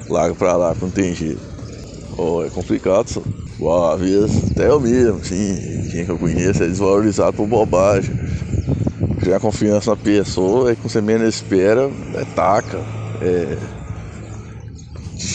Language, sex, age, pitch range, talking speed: Portuguese, male, 20-39, 95-120 Hz, 145 wpm